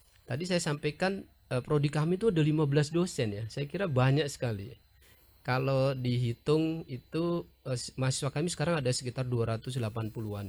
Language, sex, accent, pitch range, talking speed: Indonesian, male, native, 110-145 Hz, 130 wpm